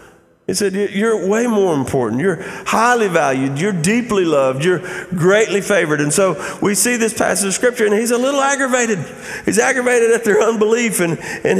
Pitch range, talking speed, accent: 130-200 Hz, 180 wpm, American